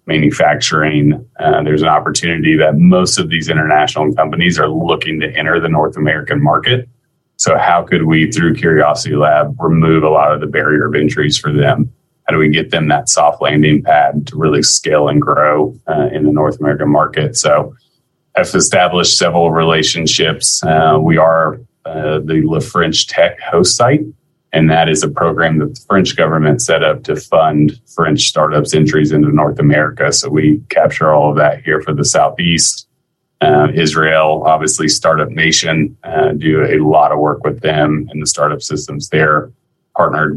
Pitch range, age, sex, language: 75-80 Hz, 30-49, male, English